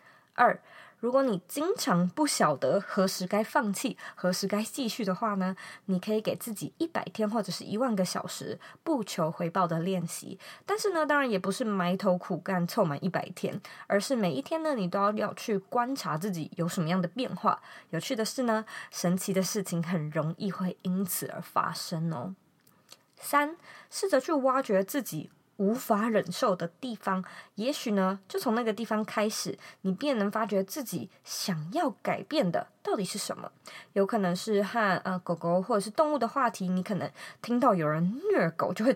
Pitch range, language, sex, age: 180-230 Hz, Chinese, female, 20-39